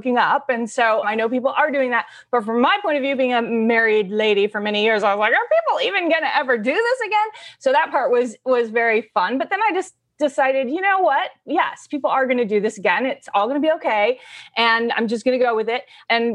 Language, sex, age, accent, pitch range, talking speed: English, female, 30-49, American, 200-260 Hz, 265 wpm